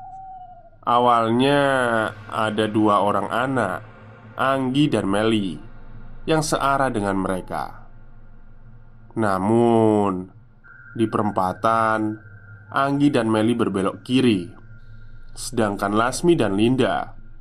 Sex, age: male, 20-39